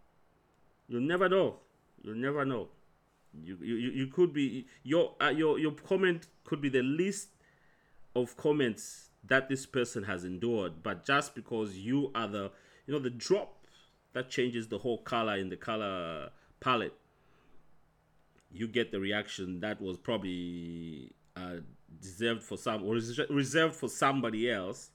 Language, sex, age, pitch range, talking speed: English, male, 40-59, 110-145 Hz, 155 wpm